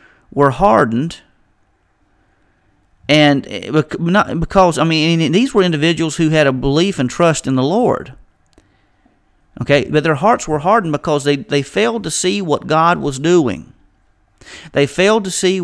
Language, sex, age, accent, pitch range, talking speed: English, male, 40-59, American, 115-165 Hz, 150 wpm